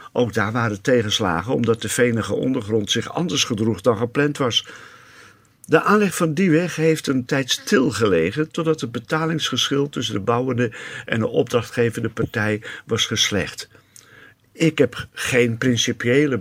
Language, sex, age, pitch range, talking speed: Dutch, male, 50-69, 115-145 Hz, 145 wpm